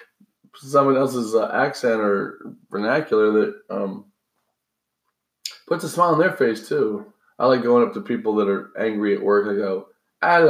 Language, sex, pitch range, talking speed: English, male, 110-160 Hz, 160 wpm